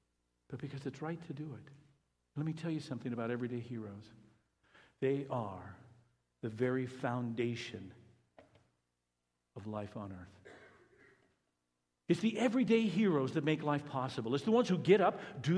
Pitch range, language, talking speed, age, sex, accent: 100-145 Hz, English, 150 wpm, 50-69, male, American